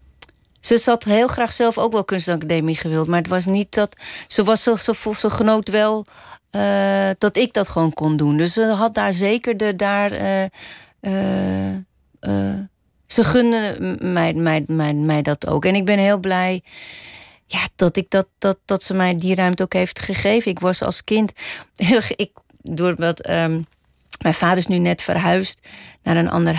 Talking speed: 160 wpm